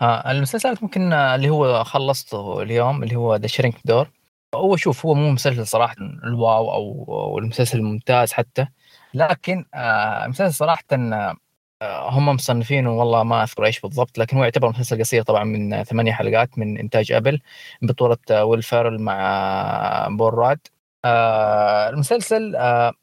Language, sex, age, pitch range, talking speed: Arabic, female, 20-39, 115-150 Hz, 130 wpm